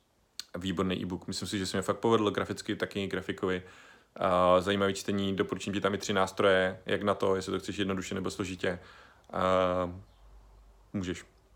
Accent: native